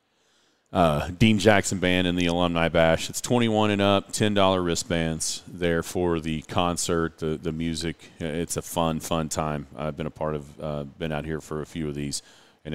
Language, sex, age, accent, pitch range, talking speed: English, male, 40-59, American, 85-105 Hz, 195 wpm